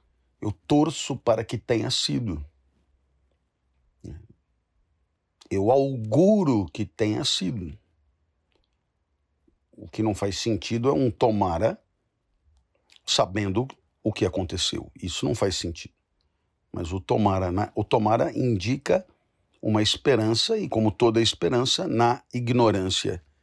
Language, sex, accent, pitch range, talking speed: Portuguese, male, Brazilian, 85-115 Hz, 100 wpm